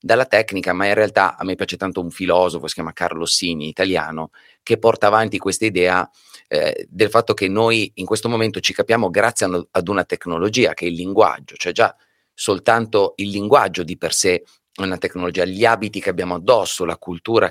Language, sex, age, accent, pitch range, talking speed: Italian, male, 30-49, native, 90-110 Hz, 195 wpm